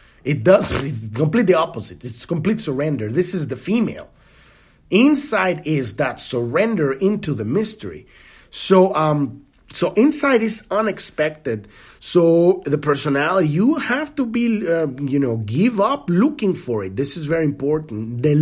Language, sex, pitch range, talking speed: English, male, 135-200 Hz, 145 wpm